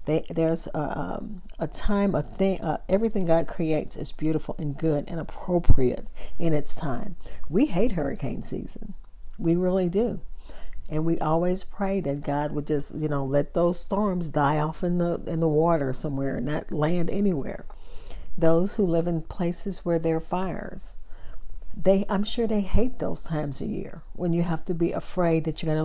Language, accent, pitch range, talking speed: English, American, 155-185 Hz, 185 wpm